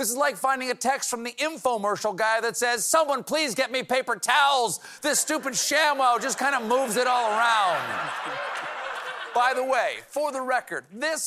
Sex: male